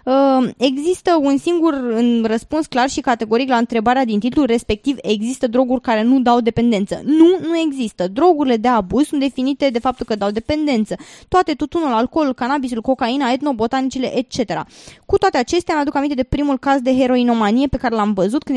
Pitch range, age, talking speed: 235-310 Hz, 20-39, 180 wpm